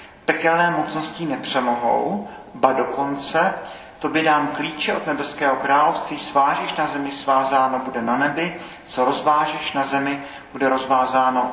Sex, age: male, 40-59